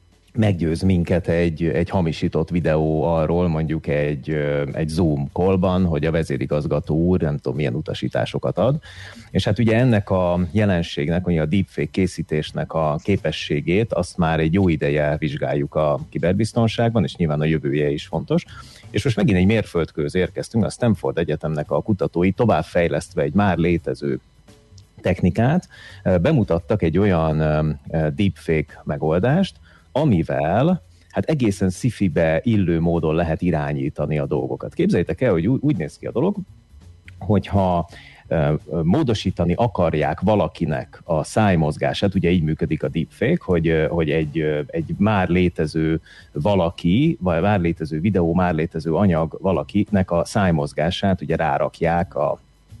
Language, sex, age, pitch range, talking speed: Hungarian, male, 30-49, 80-95 Hz, 135 wpm